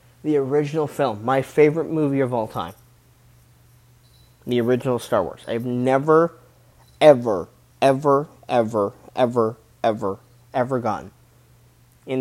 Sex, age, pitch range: male, 20-39, 120-135 Hz